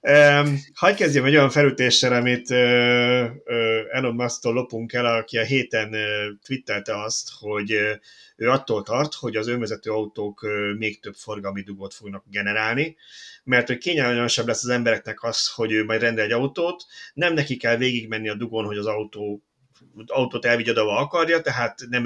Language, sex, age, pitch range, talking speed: Hungarian, male, 30-49, 110-145 Hz, 170 wpm